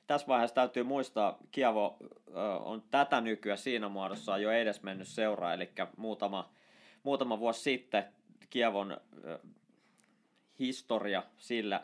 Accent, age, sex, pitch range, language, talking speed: native, 20-39, male, 100-130 Hz, Finnish, 110 wpm